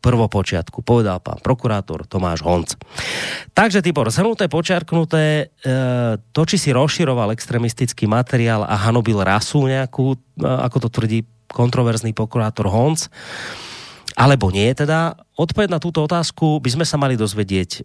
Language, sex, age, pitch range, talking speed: Slovak, male, 30-49, 110-145 Hz, 135 wpm